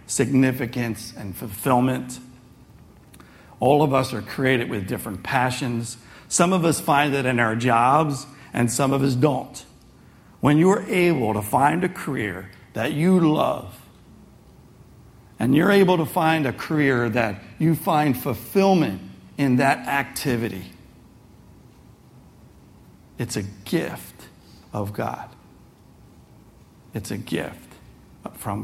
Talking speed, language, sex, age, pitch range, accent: 120 wpm, English, male, 60-79, 115-150 Hz, American